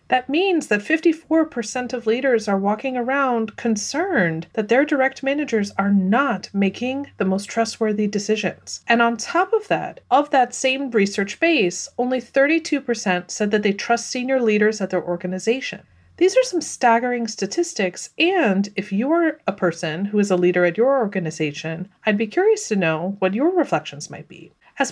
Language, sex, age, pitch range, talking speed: English, female, 30-49, 185-265 Hz, 170 wpm